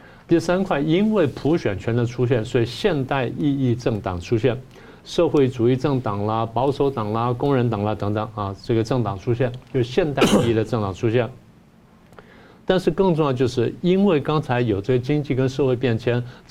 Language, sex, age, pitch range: Chinese, male, 50-69, 110-140 Hz